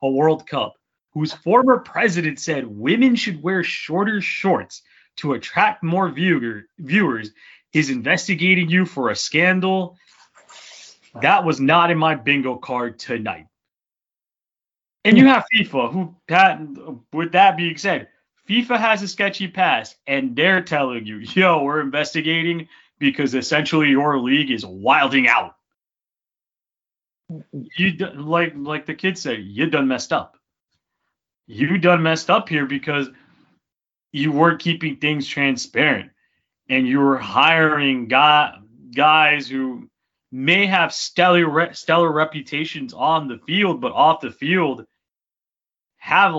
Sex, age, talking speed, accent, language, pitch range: male, 30-49, 130 wpm, American, English, 140-185 Hz